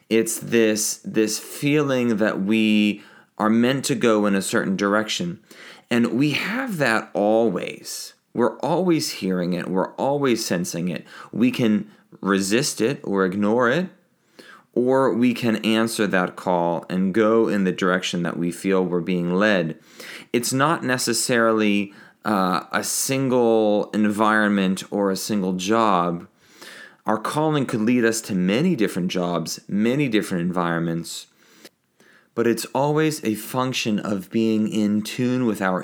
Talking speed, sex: 140 wpm, male